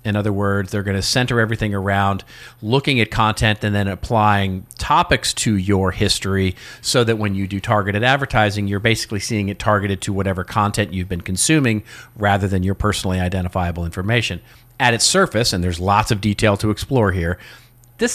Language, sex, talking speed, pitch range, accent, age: English, male, 180 wpm, 100-120 Hz, American, 40-59